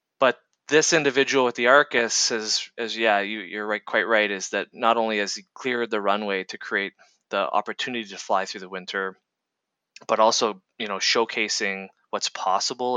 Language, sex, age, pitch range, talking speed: English, male, 20-39, 100-130 Hz, 180 wpm